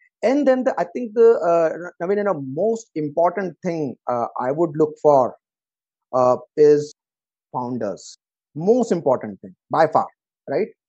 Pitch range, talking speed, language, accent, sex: 155-195 Hz, 155 wpm, English, Indian, male